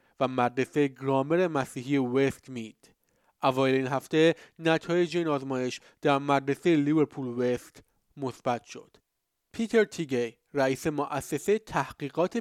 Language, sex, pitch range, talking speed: Persian, male, 130-160 Hz, 105 wpm